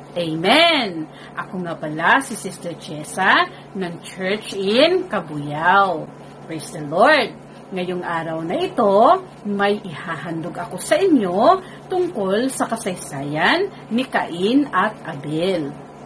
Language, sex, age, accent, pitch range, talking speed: Filipino, female, 40-59, native, 175-270 Hz, 110 wpm